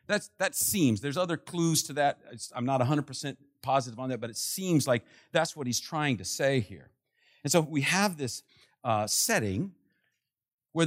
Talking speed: 175 wpm